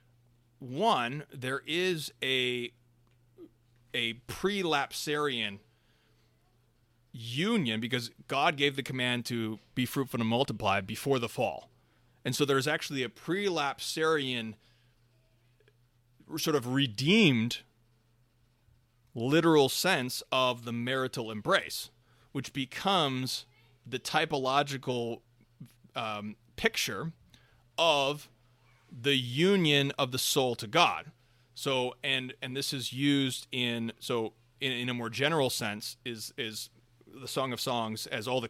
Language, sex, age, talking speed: English, male, 30-49, 115 wpm